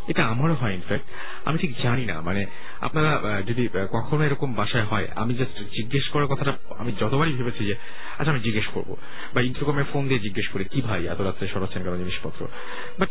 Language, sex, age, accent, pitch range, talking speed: Bengali, male, 30-49, native, 100-140 Hz, 170 wpm